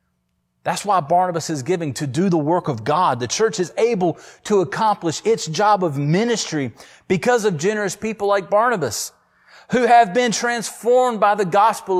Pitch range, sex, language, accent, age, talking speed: 145-210 Hz, male, English, American, 30-49, 170 wpm